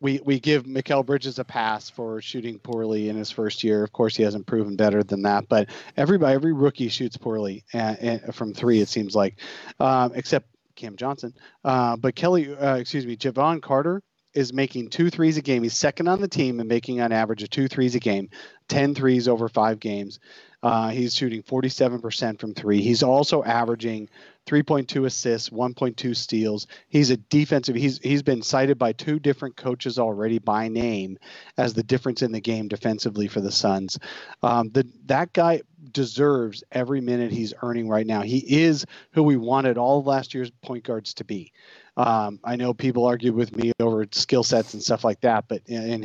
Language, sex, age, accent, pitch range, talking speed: English, male, 30-49, American, 115-135 Hz, 195 wpm